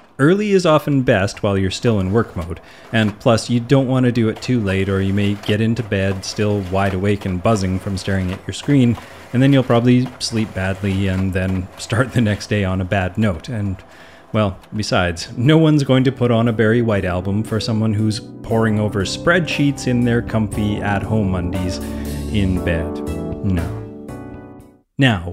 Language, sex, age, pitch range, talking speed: English, male, 30-49, 95-130 Hz, 190 wpm